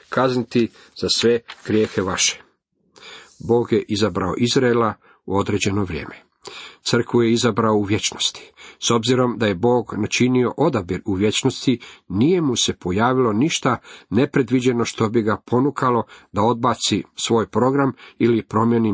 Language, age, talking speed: Croatian, 50-69, 135 wpm